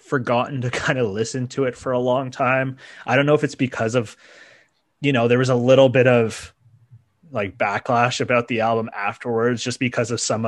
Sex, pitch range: male, 115-135 Hz